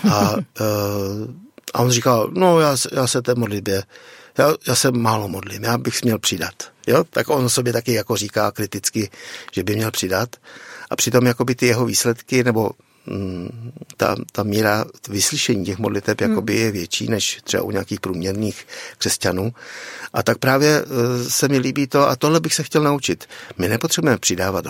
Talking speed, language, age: 165 wpm, Czech, 60-79